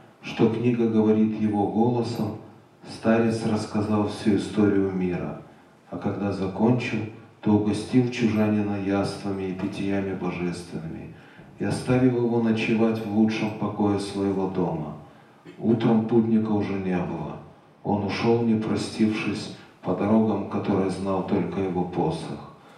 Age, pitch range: 40-59, 100-115 Hz